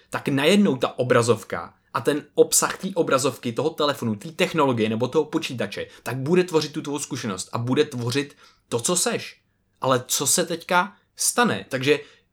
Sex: male